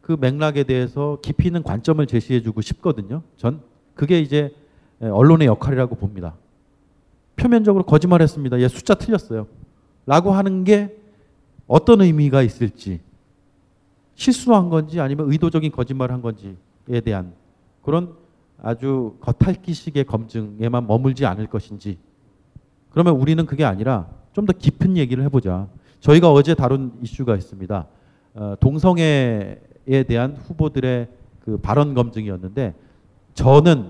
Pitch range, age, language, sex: 110-165 Hz, 40-59, Korean, male